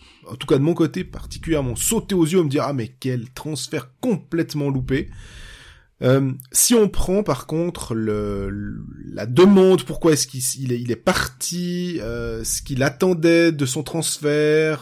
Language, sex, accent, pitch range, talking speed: French, male, French, 125-165 Hz, 180 wpm